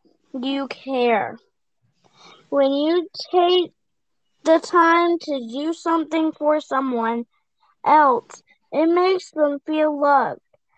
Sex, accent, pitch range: female, American, 270-320 Hz